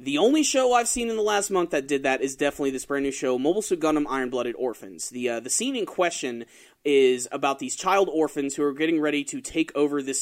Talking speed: 245 wpm